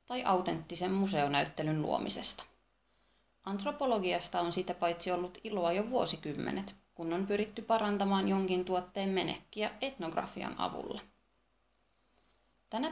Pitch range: 175-210 Hz